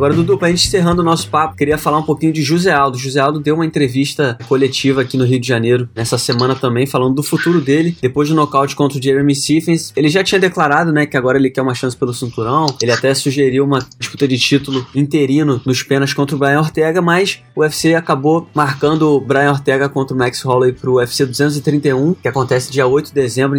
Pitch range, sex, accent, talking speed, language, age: 135-165 Hz, male, Brazilian, 225 wpm, Portuguese, 20-39